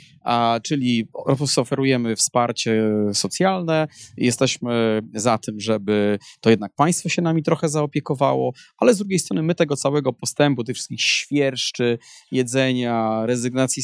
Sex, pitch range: male, 115-160 Hz